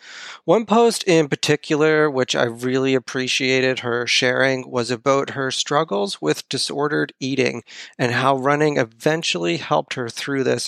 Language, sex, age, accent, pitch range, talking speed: English, male, 40-59, American, 125-150 Hz, 140 wpm